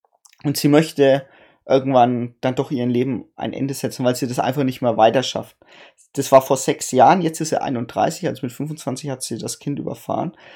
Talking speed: 200 wpm